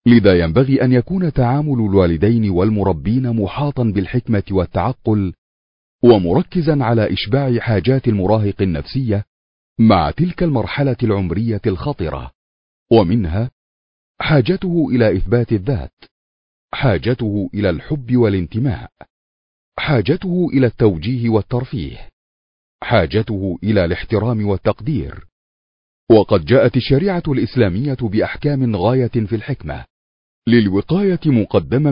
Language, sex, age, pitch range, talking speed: Arabic, male, 40-59, 95-135 Hz, 90 wpm